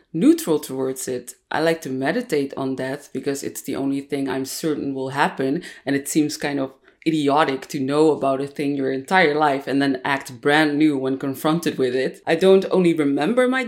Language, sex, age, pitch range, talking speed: English, female, 30-49, 140-175 Hz, 200 wpm